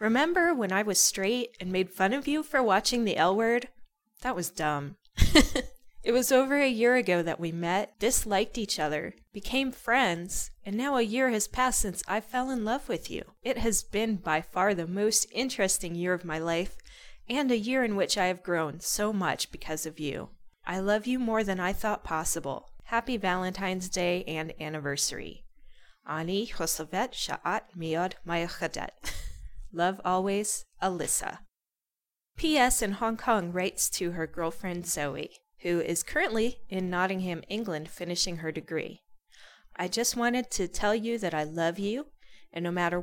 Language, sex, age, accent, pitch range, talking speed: English, female, 20-39, American, 170-235 Hz, 170 wpm